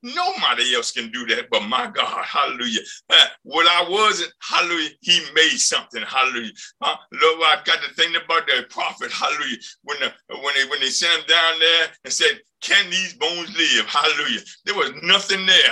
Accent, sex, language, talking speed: American, male, English, 185 wpm